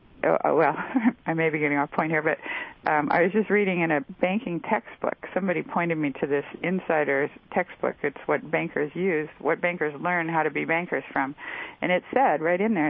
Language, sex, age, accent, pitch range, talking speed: English, female, 50-69, American, 145-175 Hz, 200 wpm